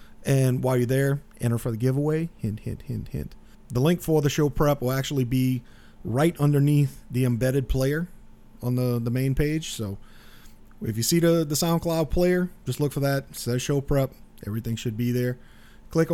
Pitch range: 125-160 Hz